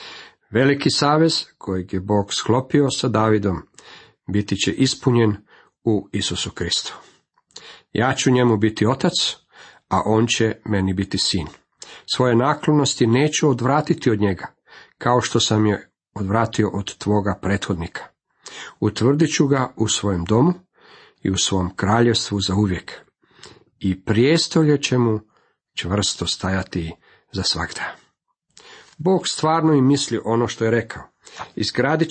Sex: male